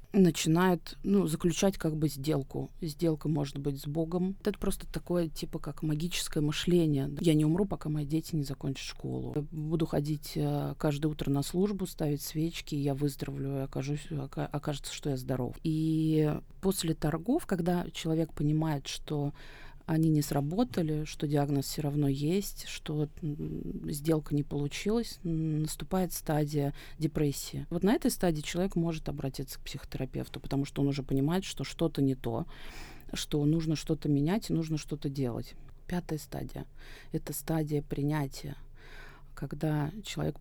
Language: Russian